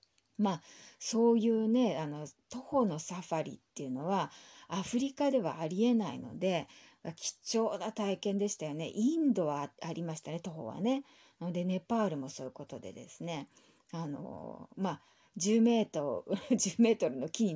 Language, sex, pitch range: Japanese, female, 165-225 Hz